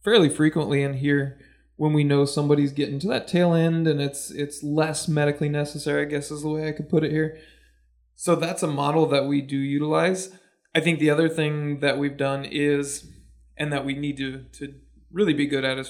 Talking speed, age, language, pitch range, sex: 215 wpm, 20-39, English, 140-155 Hz, male